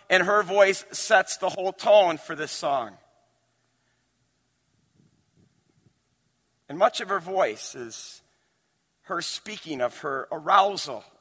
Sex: male